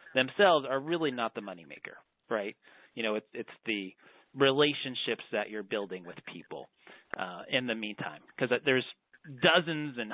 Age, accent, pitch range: 30-49, American, 120-150 Hz